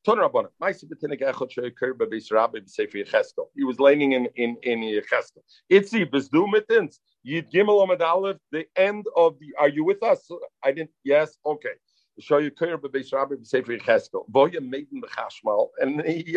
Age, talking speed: 50-69, 205 wpm